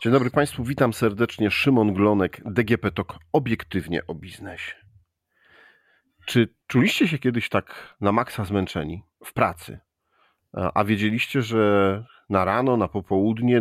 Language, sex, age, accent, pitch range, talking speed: Polish, male, 40-59, native, 100-135 Hz, 130 wpm